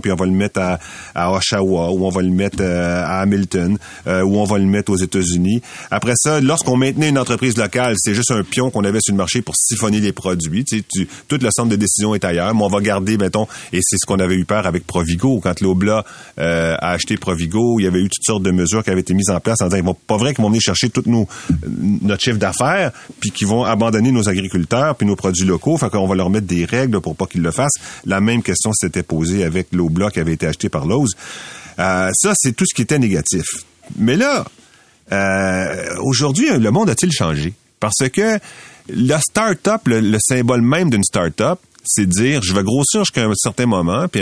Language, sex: French, male